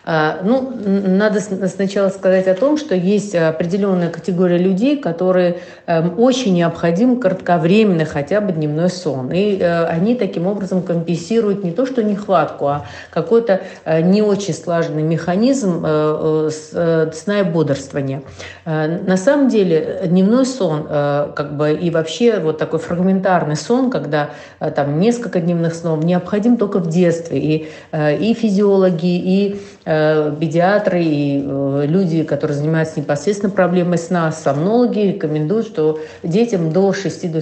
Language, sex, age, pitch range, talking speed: Russian, female, 50-69, 155-195 Hz, 125 wpm